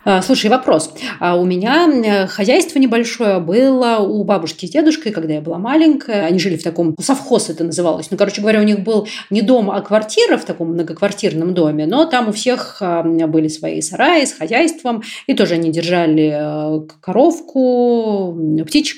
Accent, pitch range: native, 175-235 Hz